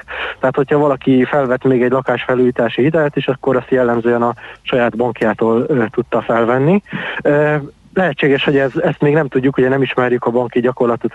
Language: Hungarian